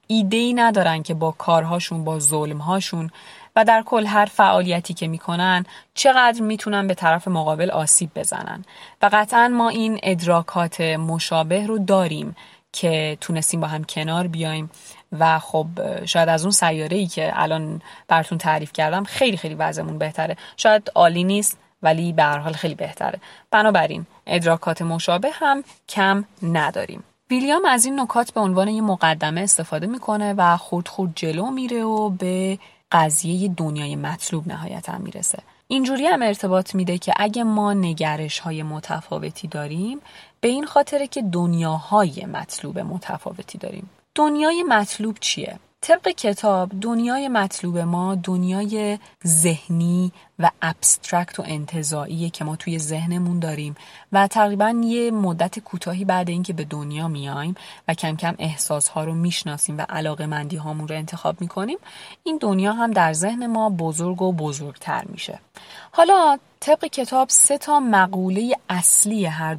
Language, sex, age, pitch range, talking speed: Persian, female, 30-49, 160-210 Hz, 140 wpm